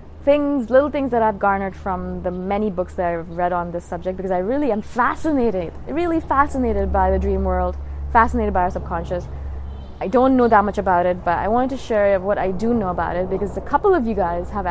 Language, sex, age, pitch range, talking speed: English, female, 20-39, 175-225 Hz, 230 wpm